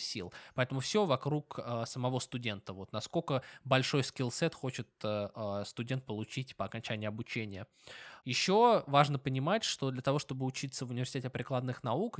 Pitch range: 115-140 Hz